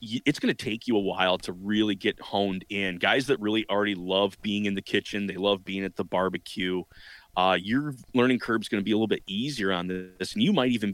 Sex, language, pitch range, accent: male, English, 95-120 Hz, American